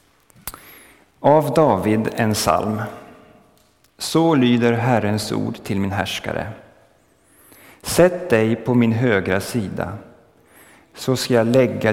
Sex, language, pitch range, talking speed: male, Swedish, 100-125 Hz, 105 wpm